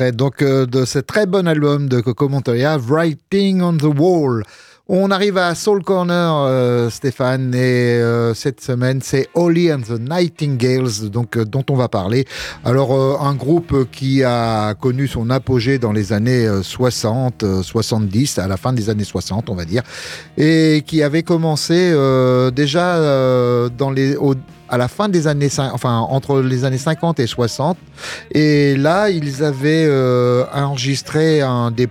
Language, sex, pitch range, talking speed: French, male, 125-155 Hz, 150 wpm